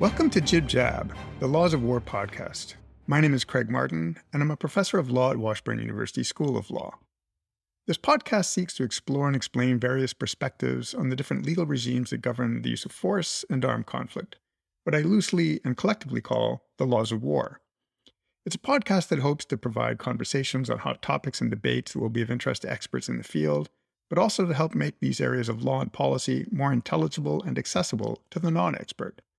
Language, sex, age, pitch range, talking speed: English, male, 50-69, 110-155 Hz, 200 wpm